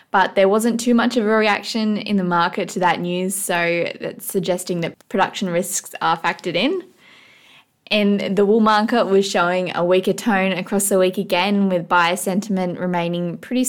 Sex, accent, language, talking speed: female, Australian, English, 180 wpm